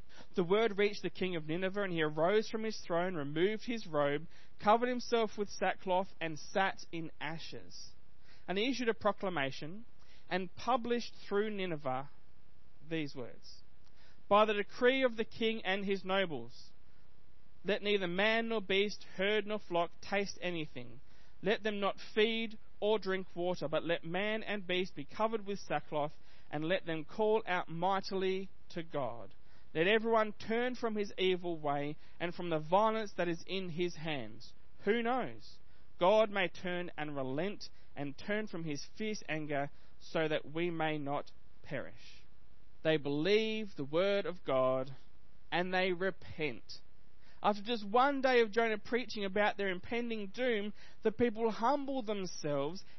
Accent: Australian